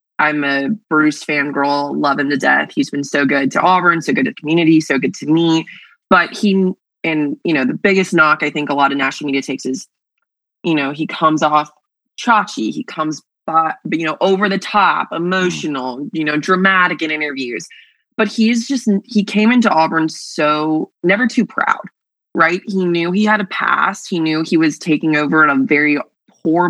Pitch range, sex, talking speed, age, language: 150-195 Hz, female, 200 wpm, 20-39, English